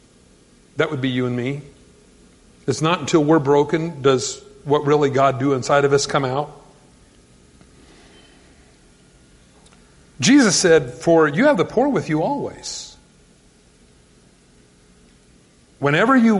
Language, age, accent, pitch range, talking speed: English, 50-69, American, 125-175 Hz, 120 wpm